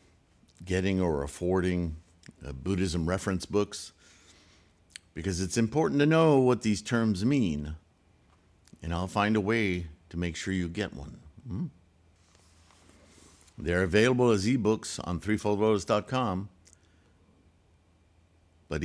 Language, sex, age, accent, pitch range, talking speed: English, male, 60-79, American, 85-110 Hz, 110 wpm